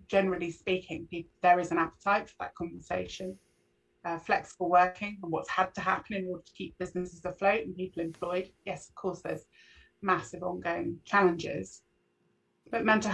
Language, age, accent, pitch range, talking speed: English, 30-49, British, 165-190 Hz, 160 wpm